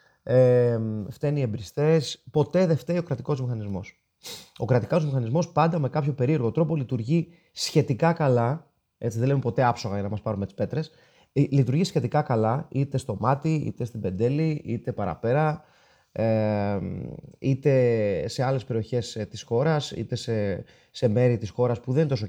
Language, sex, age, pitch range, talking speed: Greek, male, 30-49, 115-155 Hz, 155 wpm